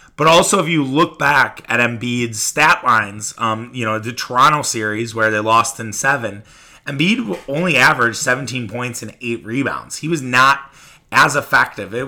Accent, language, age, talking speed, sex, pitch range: American, English, 30-49, 175 wpm, male, 120-155 Hz